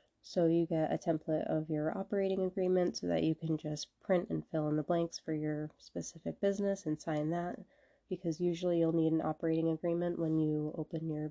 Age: 20-39